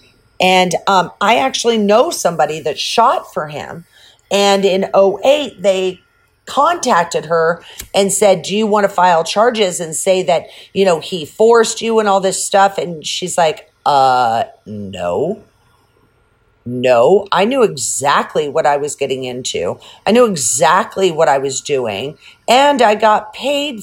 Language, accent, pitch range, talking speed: English, American, 150-205 Hz, 155 wpm